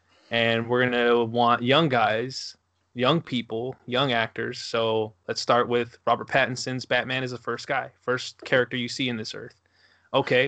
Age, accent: 20-39, American